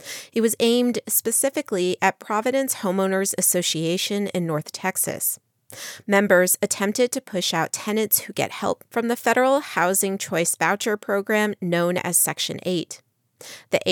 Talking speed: 140 wpm